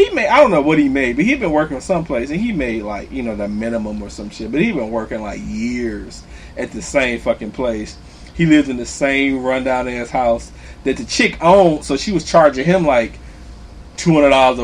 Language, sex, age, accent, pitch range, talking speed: English, male, 30-49, American, 120-185 Hz, 220 wpm